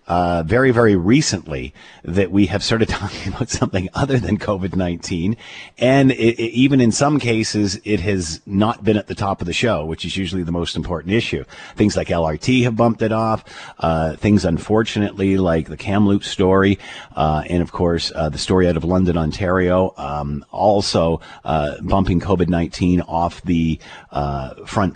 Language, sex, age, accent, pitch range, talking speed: English, male, 40-59, American, 85-110 Hz, 170 wpm